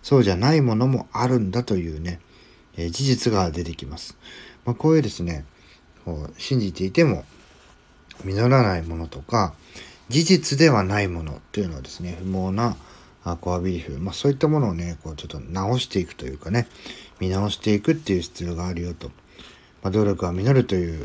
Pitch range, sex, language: 85-120 Hz, male, Japanese